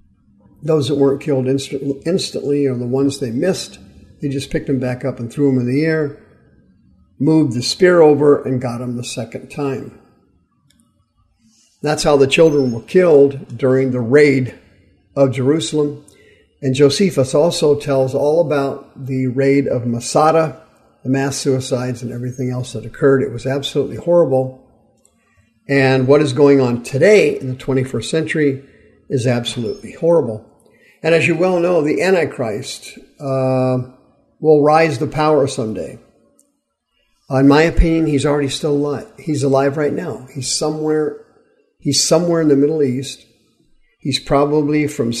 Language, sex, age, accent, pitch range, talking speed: English, male, 50-69, American, 130-150 Hz, 150 wpm